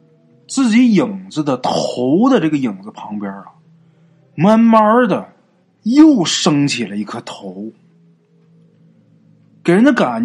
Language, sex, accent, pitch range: Chinese, male, native, 155-235 Hz